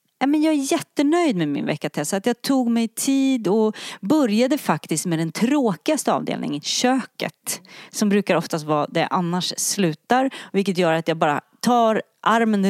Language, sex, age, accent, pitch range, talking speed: English, female, 30-49, Swedish, 175-240 Hz, 160 wpm